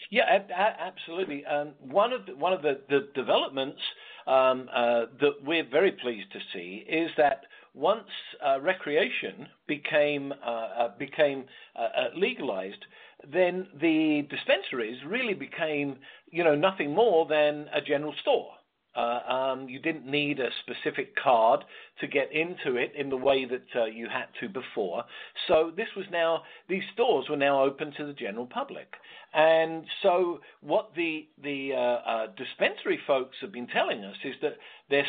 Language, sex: English, male